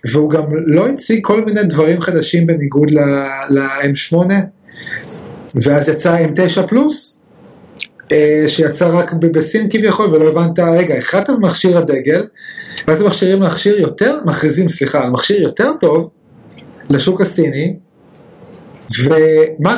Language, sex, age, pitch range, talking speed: Hebrew, male, 30-49, 145-185 Hz, 120 wpm